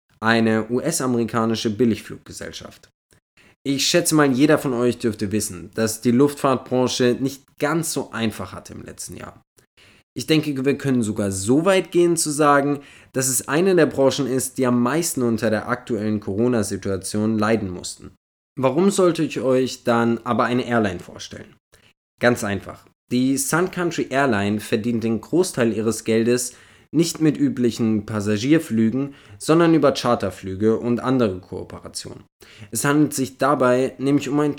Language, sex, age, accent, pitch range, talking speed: German, male, 20-39, German, 110-140 Hz, 145 wpm